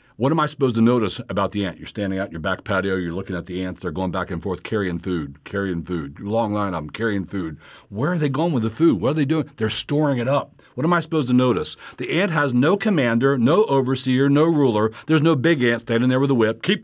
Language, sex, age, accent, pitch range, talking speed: English, male, 60-79, American, 95-135 Hz, 270 wpm